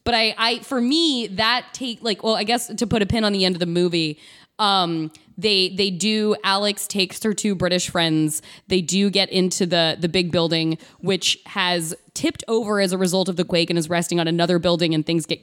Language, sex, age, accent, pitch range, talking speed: English, female, 20-39, American, 170-200 Hz, 225 wpm